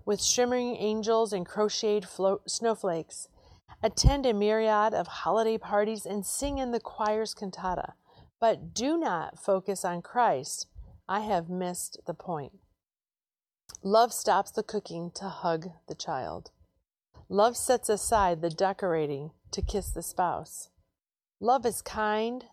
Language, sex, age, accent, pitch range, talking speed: English, female, 40-59, American, 175-225 Hz, 130 wpm